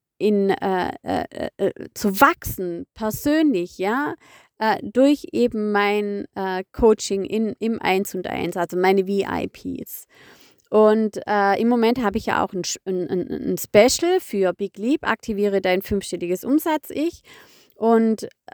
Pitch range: 195-255 Hz